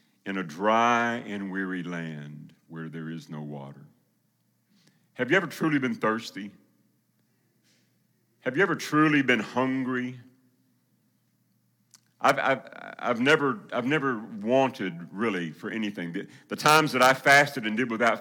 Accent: American